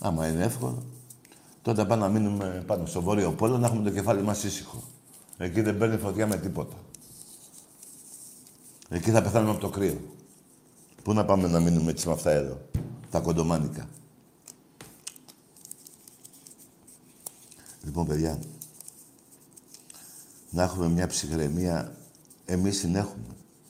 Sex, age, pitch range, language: male, 60-79, 90-115 Hz, Greek